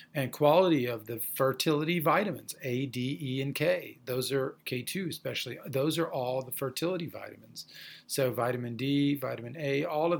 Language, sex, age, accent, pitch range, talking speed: English, male, 40-59, American, 125-155 Hz, 165 wpm